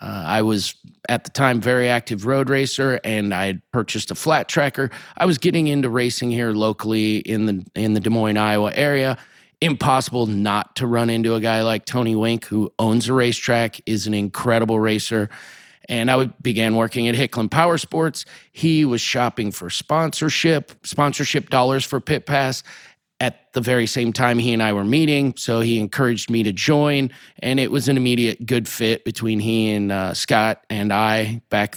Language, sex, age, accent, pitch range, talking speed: English, male, 30-49, American, 115-135 Hz, 185 wpm